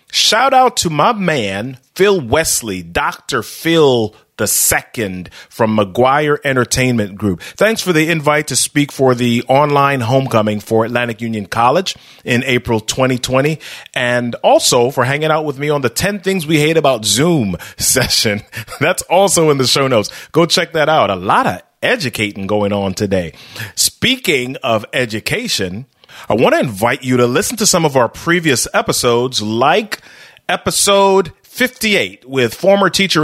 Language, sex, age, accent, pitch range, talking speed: English, male, 30-49, American, 115-165 Hz, 155 wpm